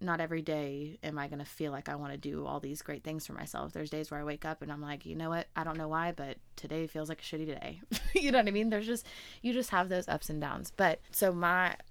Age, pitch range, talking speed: 20-39, 145-165 Hz, 295 wpm